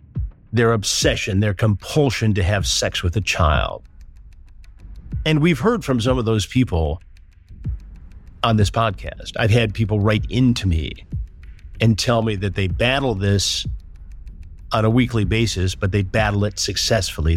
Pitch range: 90-125 Hz